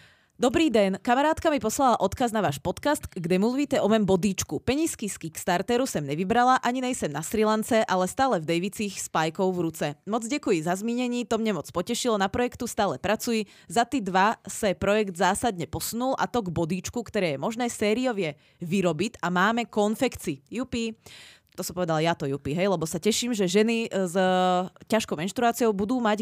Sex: female